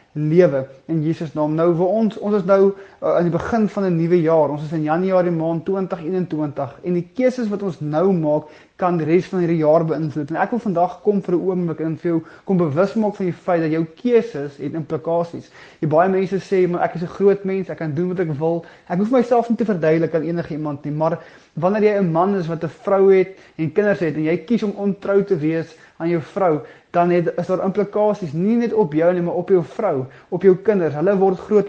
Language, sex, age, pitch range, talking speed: English, male, 20-39, 160-195 Hz, 240 wpm